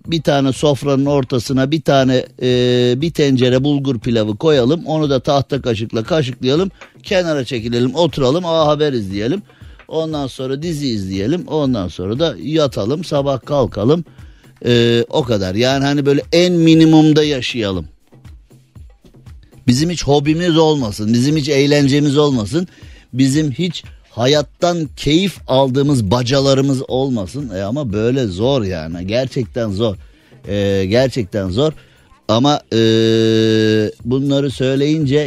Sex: male